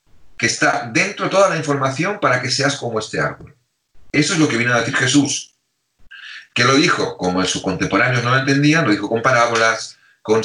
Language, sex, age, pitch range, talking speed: Spanish, male, 40-59, 105-145 Hz, 200 wpm